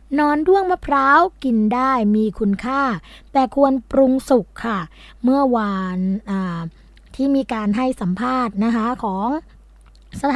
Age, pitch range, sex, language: 20-39, 210-270 Hz, female, Thai